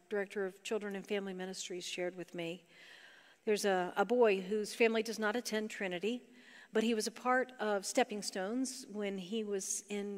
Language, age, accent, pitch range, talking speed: English, 50-69, American, 190-235 Hz, 185 wpm